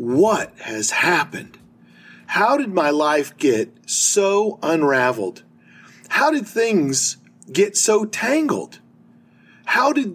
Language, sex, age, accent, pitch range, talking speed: English, male, 40-59, American, 125-175 Hz, 105 wpm